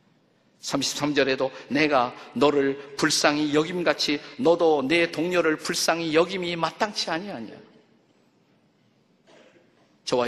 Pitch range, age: 120-160 Hz, 50-69